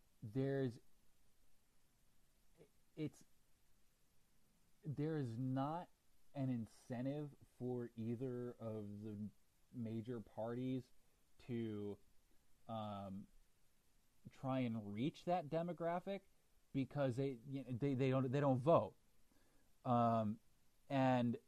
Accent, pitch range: American, 115-140 Hz